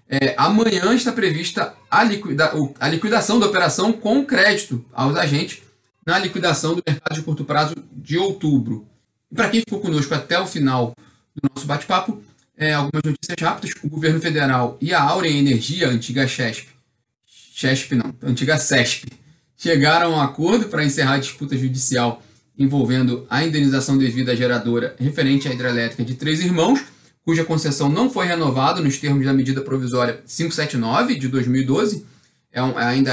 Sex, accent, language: male, Brazilian, Portuguese